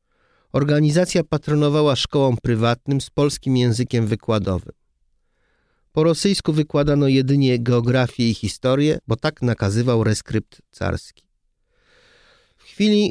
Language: Polish